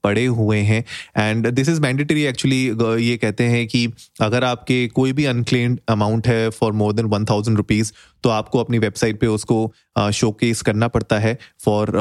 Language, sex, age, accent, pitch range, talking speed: Hindi, male, 30-49, native, 105-125 Hz, 175 wpm